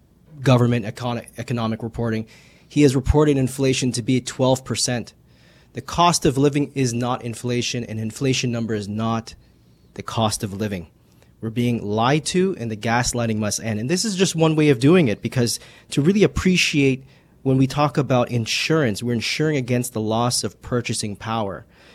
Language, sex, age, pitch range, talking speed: English, male, 30-49, 110-140 Hz, 165 wpm